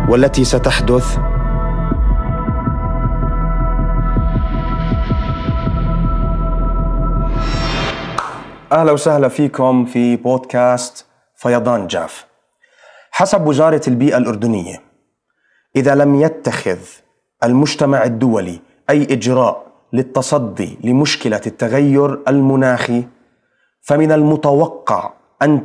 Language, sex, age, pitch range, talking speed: Arabic, male, 30-49, 125-150 Hz, 65 wpm